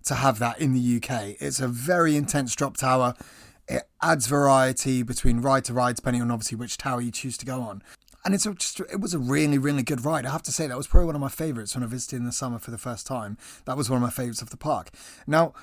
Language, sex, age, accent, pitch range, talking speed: English, male, 20-39, British, 125-150 Hz, 270 wpm